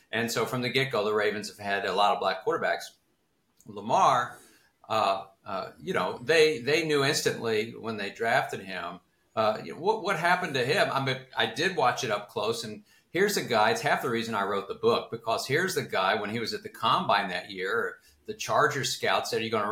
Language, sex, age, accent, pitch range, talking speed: English, male, 50-69, American, 115-155 Hz, 230 wpm